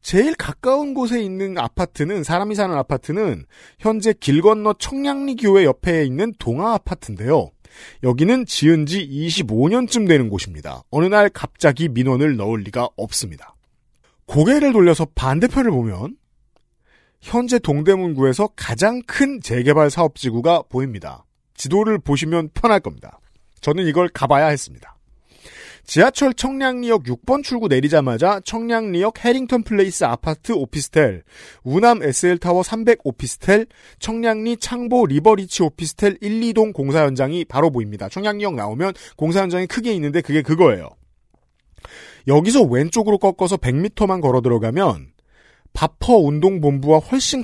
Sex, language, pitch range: male, Korean, 140-220 Hz